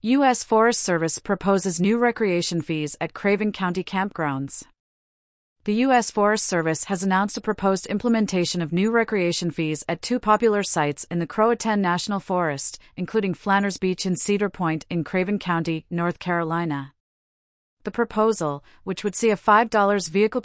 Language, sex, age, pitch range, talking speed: English, female, 30-49, 170-210 Hz, 155 wpm